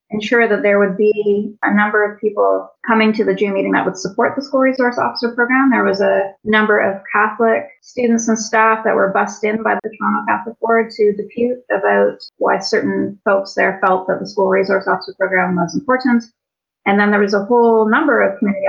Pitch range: 185-225 Hz